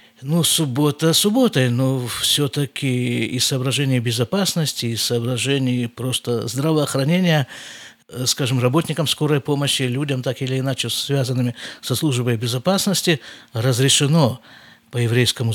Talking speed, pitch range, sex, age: 105 wpm, 120-160 Hz, male, 50-69